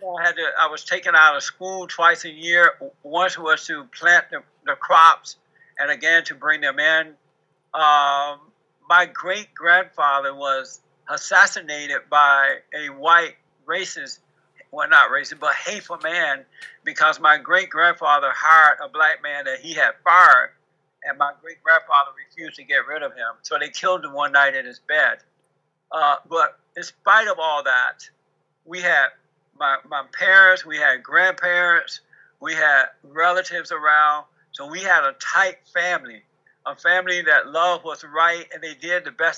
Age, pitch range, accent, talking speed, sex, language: 60-79, 150-185 Hz, American, 165 wpm, male, English